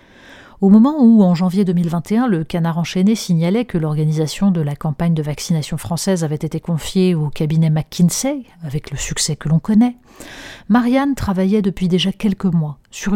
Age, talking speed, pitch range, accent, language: 40-59, 170 wpm, 160-190 Hz, French, French